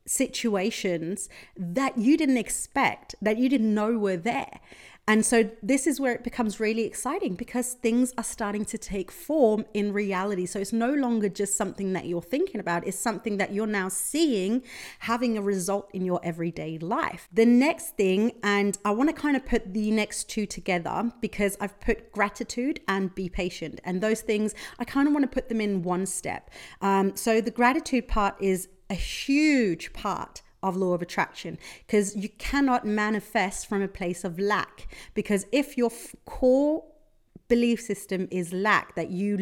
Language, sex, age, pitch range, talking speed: English, female, 30-49, 190-235 Hz, 180 wpm